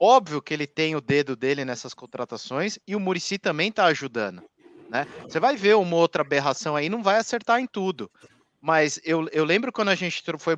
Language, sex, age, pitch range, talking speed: Portuguese, male, 20-39, 155-220 Hz, 205 wpm